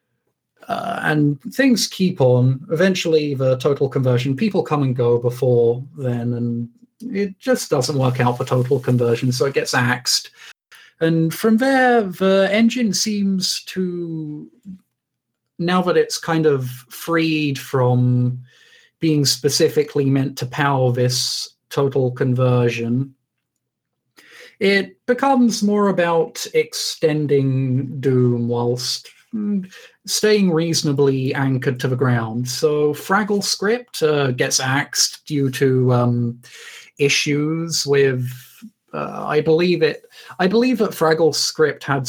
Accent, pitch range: British, 125-175 Hz